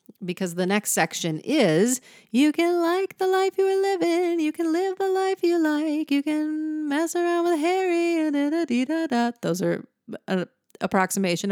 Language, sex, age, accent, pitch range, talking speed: English, female, 40-59, American, 185-275 Hz, 160 wpm